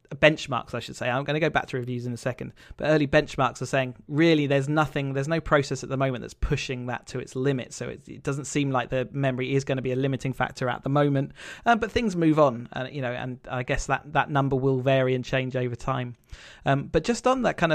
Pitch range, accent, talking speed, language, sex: 130-165 Hz, British, 265 wpm, English, male